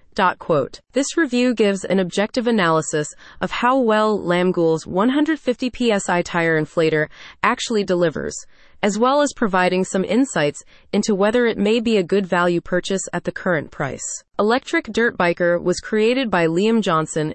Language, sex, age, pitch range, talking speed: English, female, 30-49, 175-230 Hz, 150 wpm